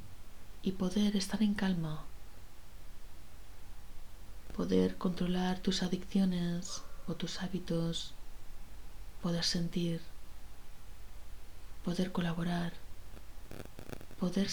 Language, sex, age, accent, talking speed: Spanish, female, 30-49, Spanish, 70 wpm